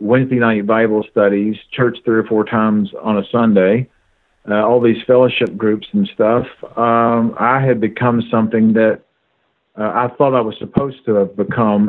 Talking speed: 170 wpm